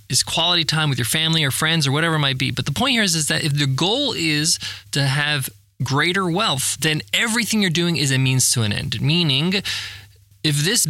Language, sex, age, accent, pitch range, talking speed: English, male, 20-39, American, 135-185 Hz, 225 wpm